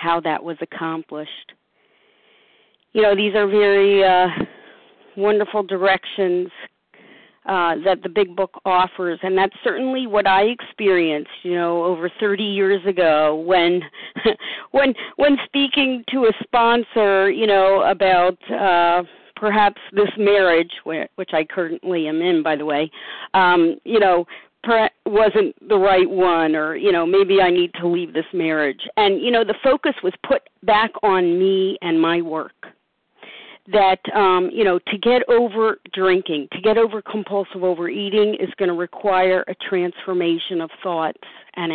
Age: 50-69